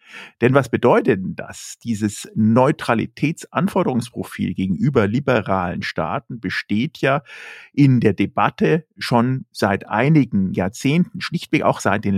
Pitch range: 100-130 Hz